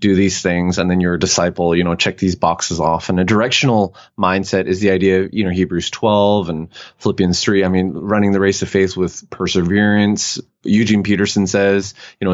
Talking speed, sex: 210 wpm, male